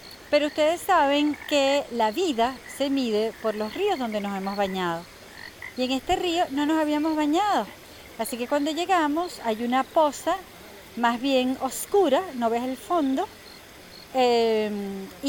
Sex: female